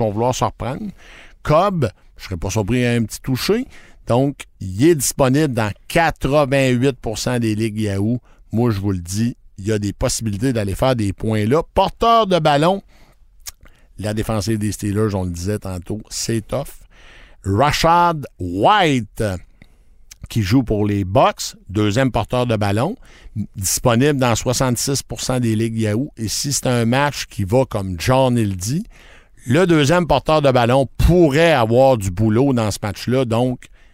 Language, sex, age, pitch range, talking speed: French, male, 60-79, 105-140 Hz, 160 wpm